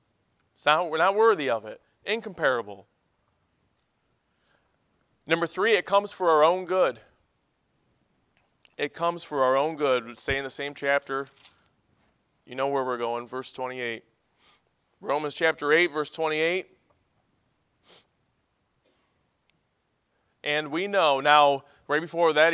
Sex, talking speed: male, 120 wpm